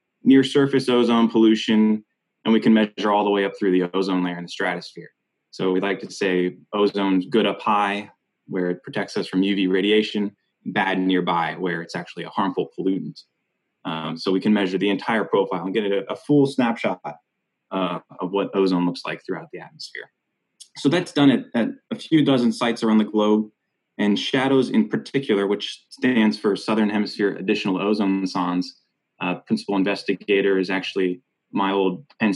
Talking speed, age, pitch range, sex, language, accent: 180 wpm, 20-39, 95-110 Hz, male, English, American